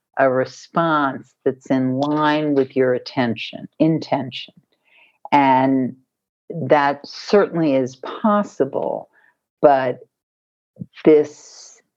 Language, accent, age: English, American, 50-69